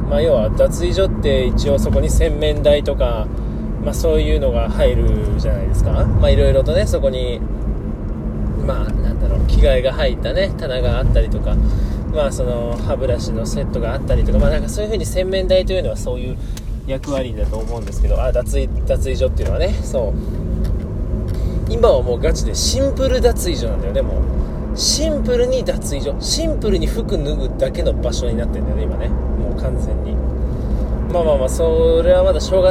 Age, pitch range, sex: 20-39, 70-110 Hz, male